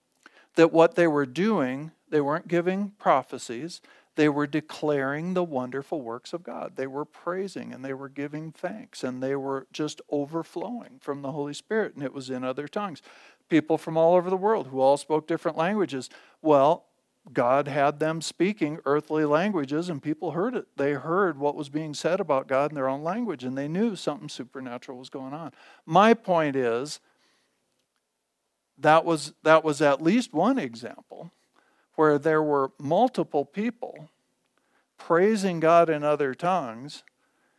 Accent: American